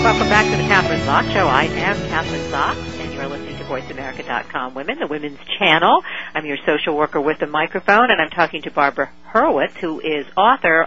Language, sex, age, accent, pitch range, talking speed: English, female, 50-69, American, 155-230 Hz, 205 wpm